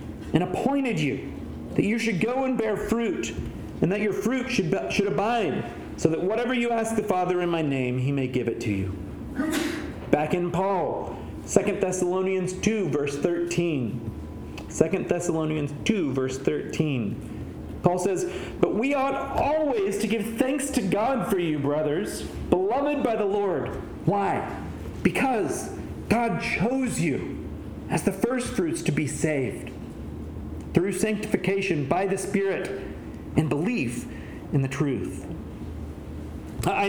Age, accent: 40-59, American